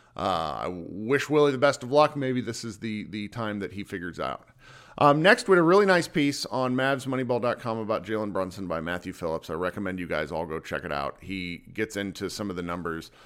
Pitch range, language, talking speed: 85-110 Hz, English, 225 wpm